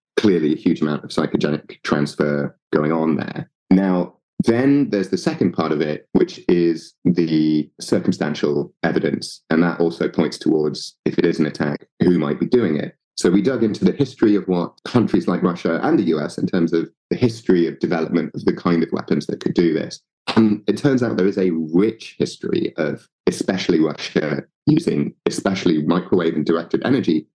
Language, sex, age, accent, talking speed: English, male, 30-49, British, 190 wpm